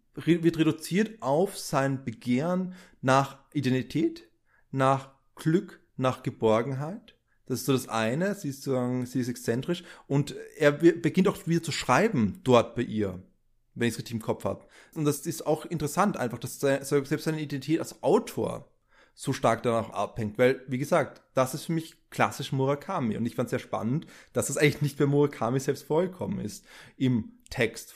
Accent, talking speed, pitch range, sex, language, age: German, 175 wpm, 125-165 Hz, male, German, 30-49